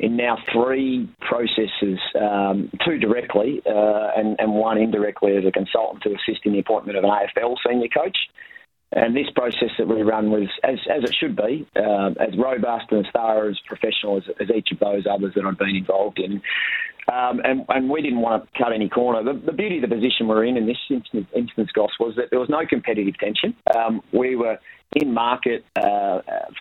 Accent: Australian